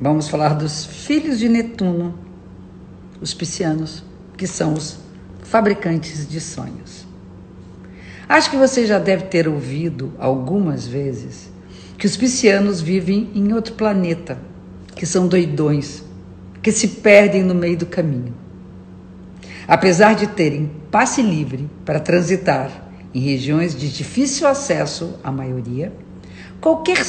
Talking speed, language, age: 120 wpm, Portuguese, 50-69